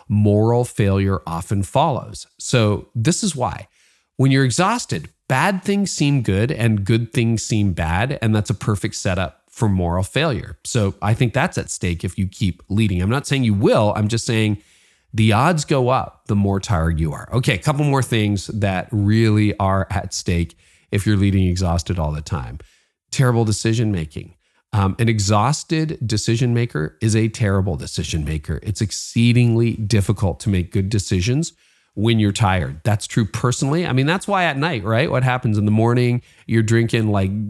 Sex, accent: male, American